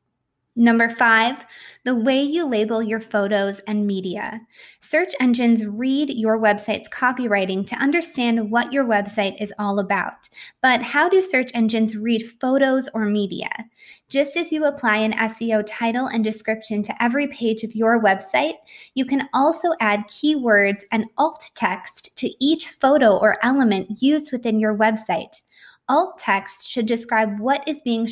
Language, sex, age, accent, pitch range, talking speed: English, female, 20-39, American, 210-260 Hz, 155 wpm